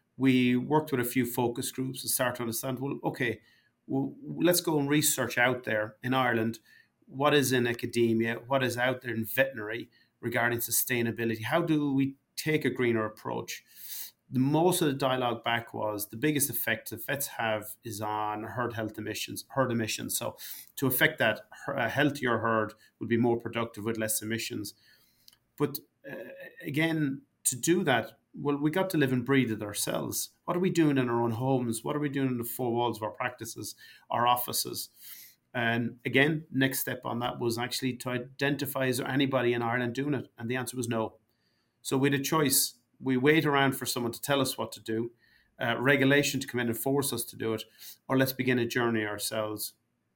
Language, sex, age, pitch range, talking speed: English, male, 30-49, 115-135 Hz, 200 wpm